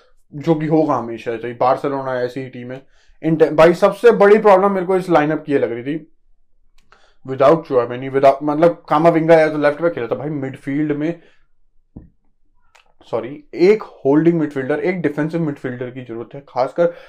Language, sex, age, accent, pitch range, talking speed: Hindi, male, 20-39, native, 140-175 Hz, 90 wpm